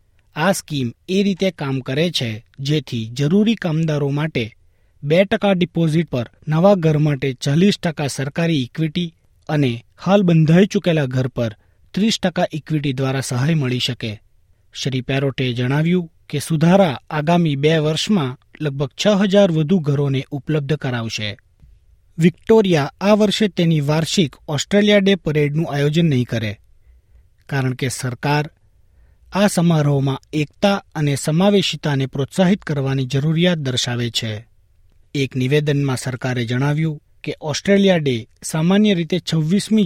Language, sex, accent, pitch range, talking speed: Gujarati, male, native, 125-170 Hz, 120 wpm